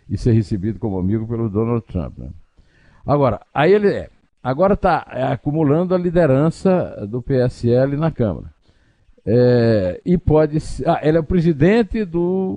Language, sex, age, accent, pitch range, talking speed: Portuguese, male, 60-79, Brazilian, 115-180 Hz, 145 wpm